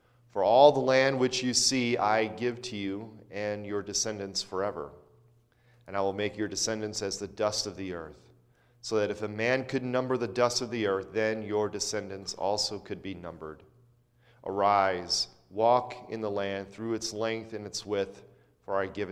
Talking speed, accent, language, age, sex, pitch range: 190 wpm, American, English, 40-59, male, 105-120 Hz